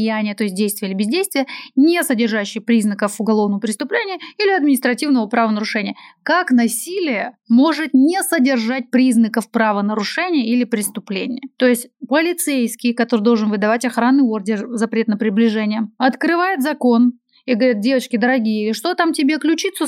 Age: 30-49